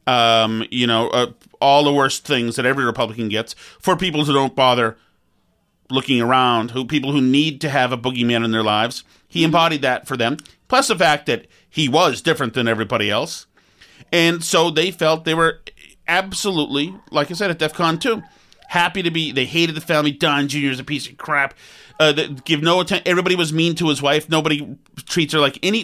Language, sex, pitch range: English, male, 130-170 Hz